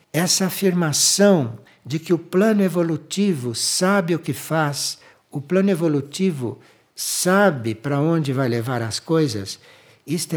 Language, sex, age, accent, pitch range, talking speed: Portuguese, male, 60-79, Brazilian, 120-175 Hz, 125 wpm